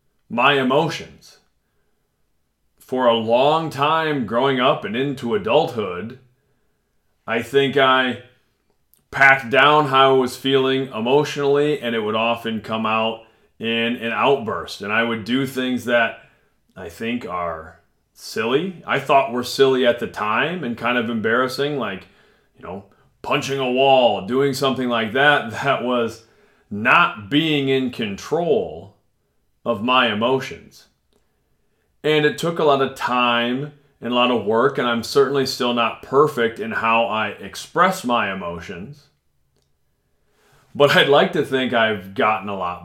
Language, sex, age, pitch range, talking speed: English, male, 30-49, 115-140 Hz, 145 wpm